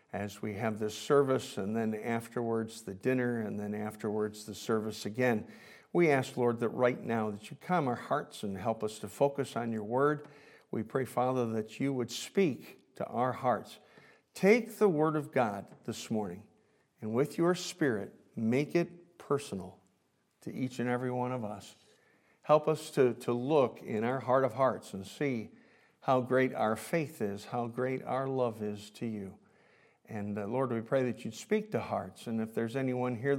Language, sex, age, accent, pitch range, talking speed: English, male, 50-69, American, 110-135 Hz, 185 wpm